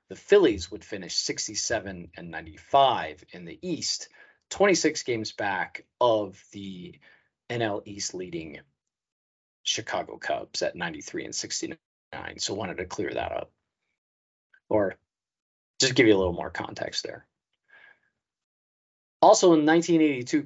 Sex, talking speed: male, 125 wpm